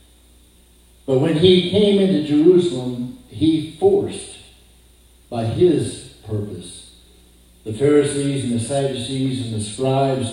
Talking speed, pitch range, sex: 110 wpm, 90-135 Hz, male